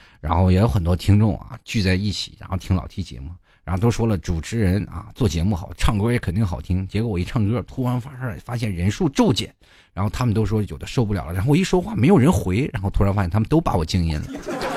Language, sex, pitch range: Chinese, male, 90-130 Hz